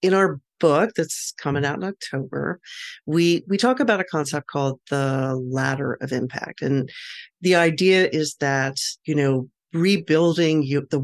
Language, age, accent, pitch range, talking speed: English, 40-59, American, 135-170 Hz, 150 wpm